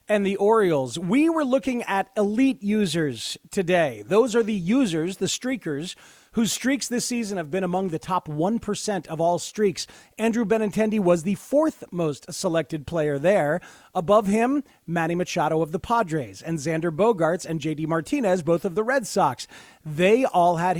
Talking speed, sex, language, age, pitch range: 170 wpm, male, English, 40-59, 160-210 Hz